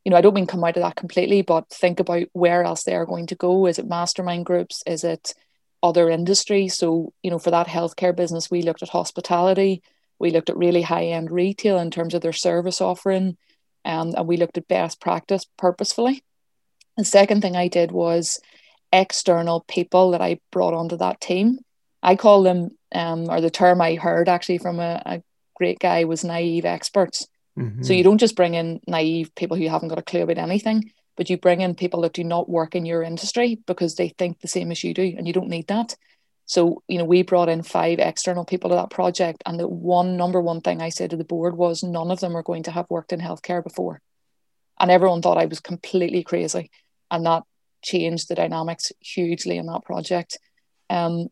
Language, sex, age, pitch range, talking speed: English, female, 30-49, 170-185 Hz, 215 wpm